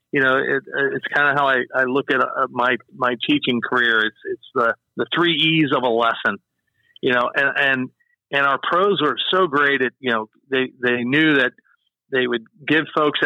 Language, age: English, 40-59